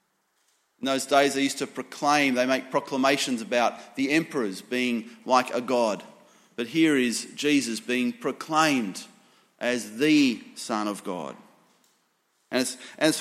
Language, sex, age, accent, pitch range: Chinese, male, 30-49, Australian, 130-175 Hz